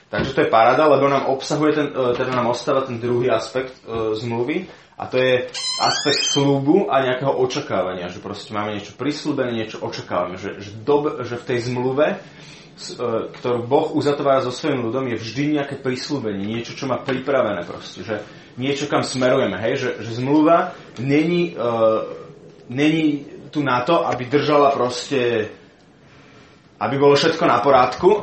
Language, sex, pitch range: Slovak, male, 120-145 Hz